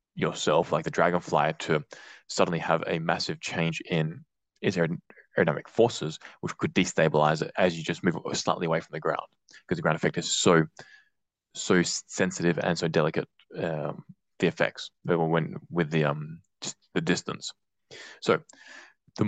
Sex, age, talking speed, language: male, 20-39, 160 wpm, English